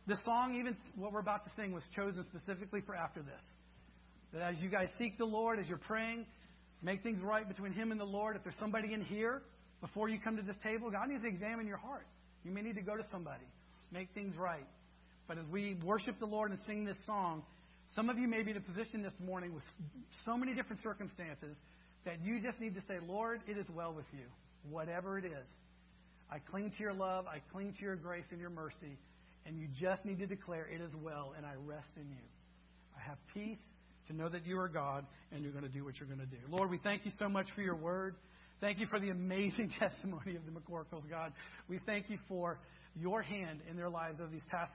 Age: 40-59